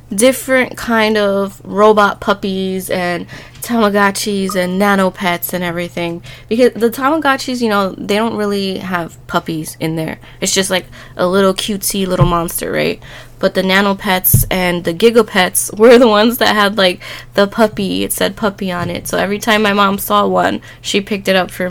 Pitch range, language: 185-230 Hz, English